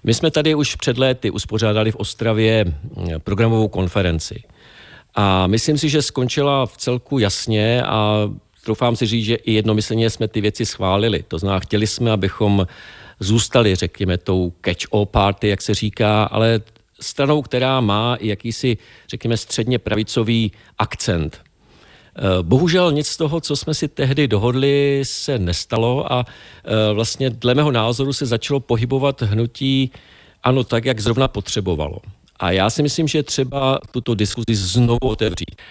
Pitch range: 105-125 Hz